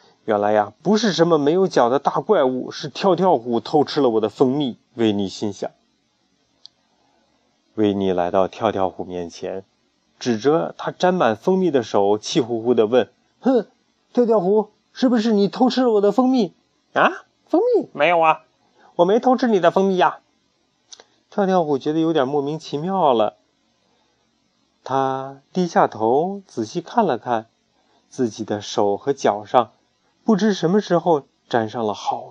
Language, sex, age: Chinese, male, 30-49